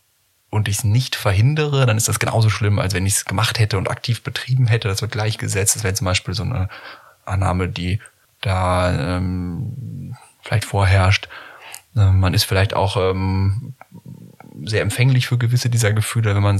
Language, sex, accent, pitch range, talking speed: German, male, German, 95-115 Hz, 175 wpm